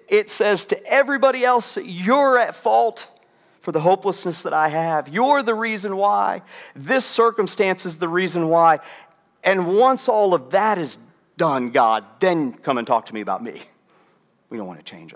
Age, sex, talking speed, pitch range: 50-69, male, 180 wpm, 150-185 Hz